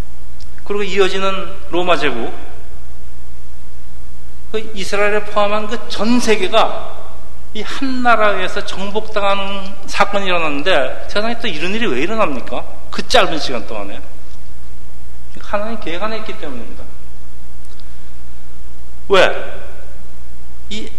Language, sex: Korean, male